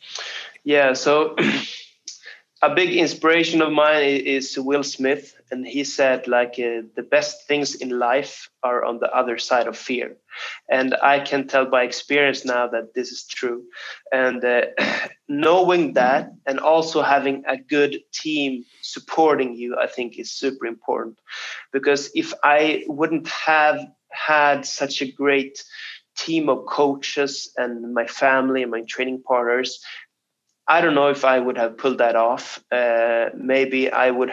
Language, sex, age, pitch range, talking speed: English, male, 20-39, 125-150 Hz, 155 wpm